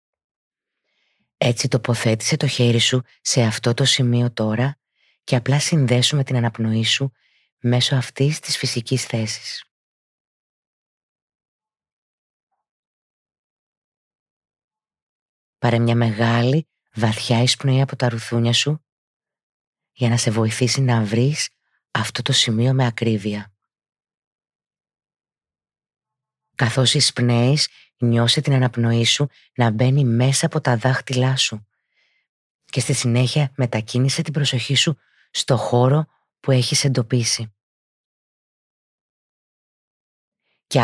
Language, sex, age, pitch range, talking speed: Greek, female, 20-39, 115-135 Hz, 100 wpm